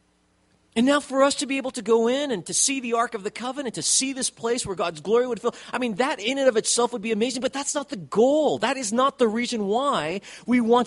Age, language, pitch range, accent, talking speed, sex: 40-59, English, 155-245 Hz, American, 275 wpm, male